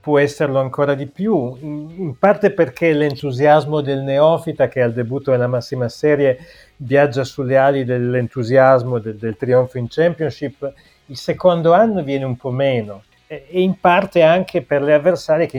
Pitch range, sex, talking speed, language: 130-155 Hz, male, 160 wpm, Italian